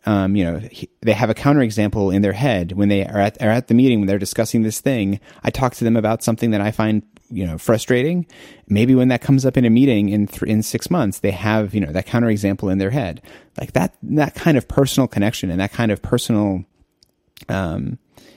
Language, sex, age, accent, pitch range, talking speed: English, male, 30-49, American, 95-115 Hz, 230 wpm